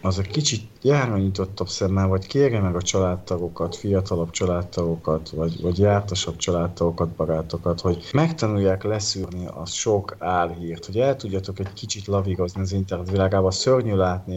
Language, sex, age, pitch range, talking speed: Hungarian, male, 30-49, 90-100 Hz, 145 wpm